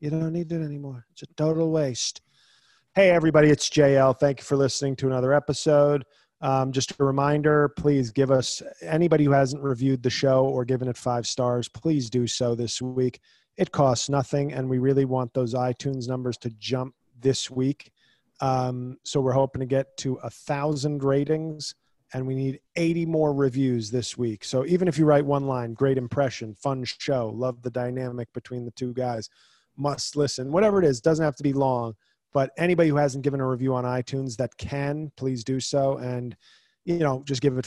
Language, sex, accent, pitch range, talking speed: English, male, American, 125-150 Hz, 195 wpm